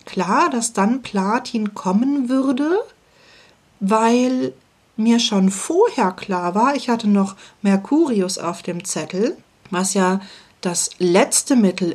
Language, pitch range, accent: German, 190-245 Hz, German